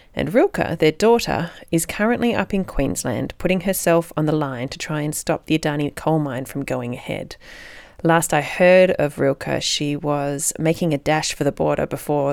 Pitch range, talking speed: 145-180 Hz, 190 wpm